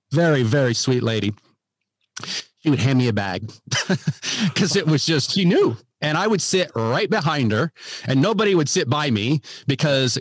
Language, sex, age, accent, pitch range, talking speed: English, male, 40-59, American, 115-155 Hz, 175 wpm